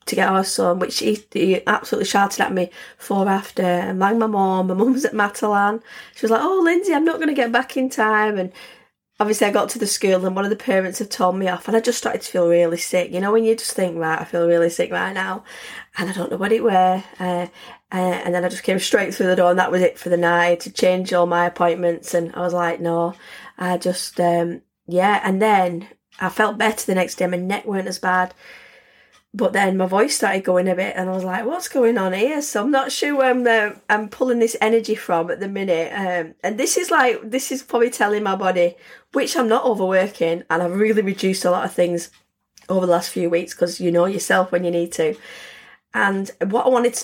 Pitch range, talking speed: 180-225 Hz, 245 wpm